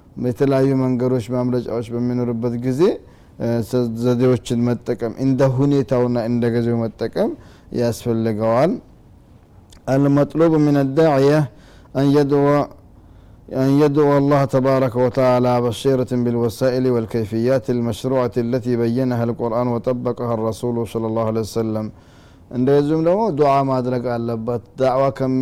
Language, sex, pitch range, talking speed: Amharic, male, 120-135 Hz, 110 wpm